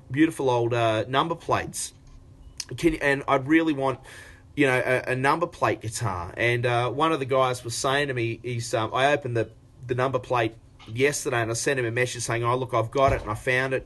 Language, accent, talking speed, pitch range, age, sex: English, Australian, 230 wpm, 120-150 Hz, 30-49, male